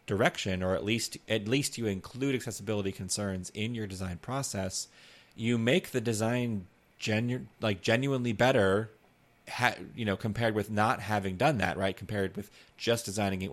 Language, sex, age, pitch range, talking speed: English, male, 30-49, 100-120 Hz, 165 wpm